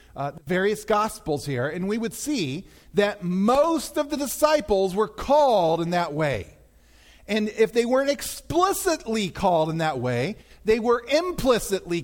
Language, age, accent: English, 40-59, American